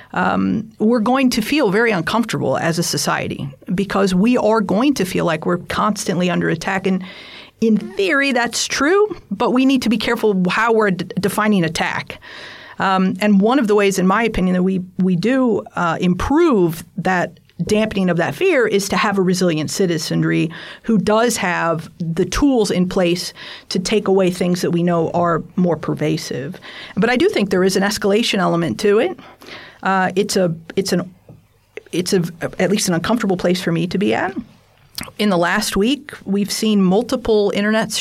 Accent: American